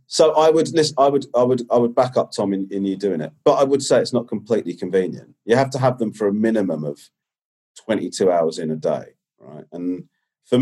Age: 30-49